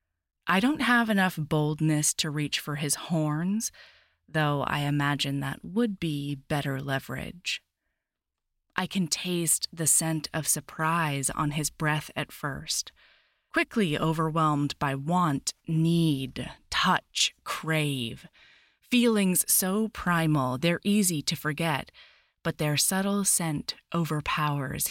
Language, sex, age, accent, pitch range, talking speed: English, female, 20-39, American, 150-185 Hz, 120 wpm